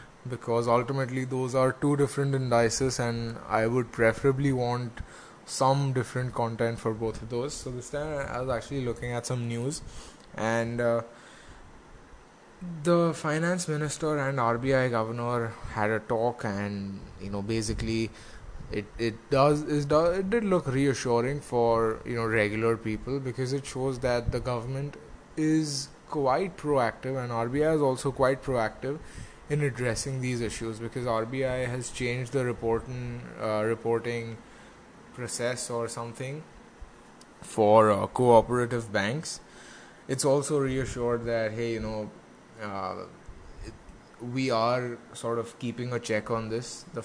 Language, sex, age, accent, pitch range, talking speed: English, male, 20-39, Indian, 115-135 Hz, 140 wpm